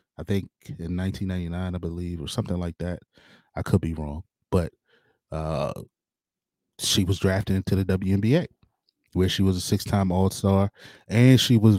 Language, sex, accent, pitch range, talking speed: English, male, American, 90-110 Hz, 160 wpm